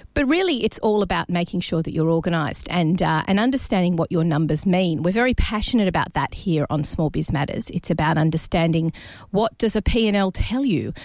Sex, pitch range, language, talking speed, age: female, 165-215 Hz, English, 210 wpm, 40-59